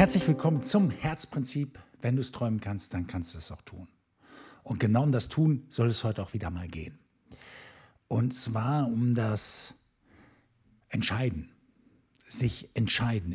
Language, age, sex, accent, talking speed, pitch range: German, 60-79, male, German, 155 wpm, 90-120 Hz